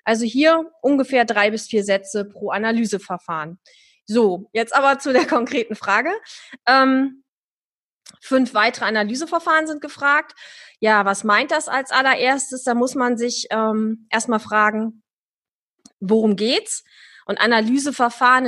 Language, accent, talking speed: German, German, 125 wpm